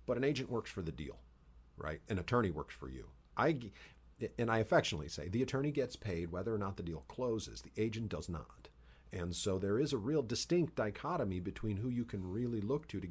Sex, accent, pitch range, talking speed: male, American, 80-120 Hz, 220 wpm